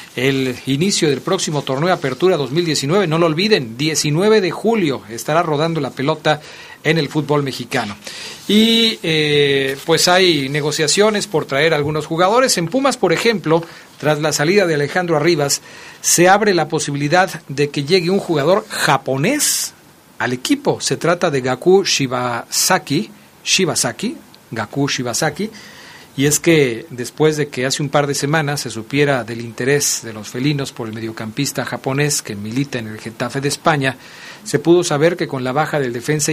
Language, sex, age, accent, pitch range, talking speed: Spanish, male, 40-59, Mexican, 135-180 Hz, 165 wpm